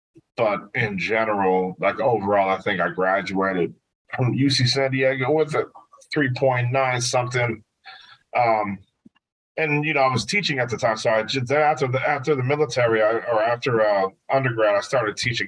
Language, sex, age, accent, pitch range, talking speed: English, male, 40-59, American, 100-125 Hz, 165 wpm